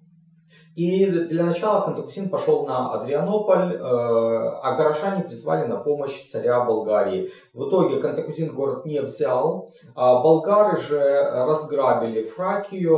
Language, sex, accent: Russian, male, native